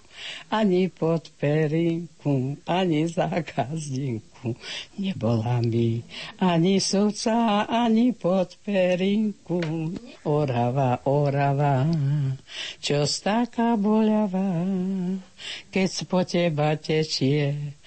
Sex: female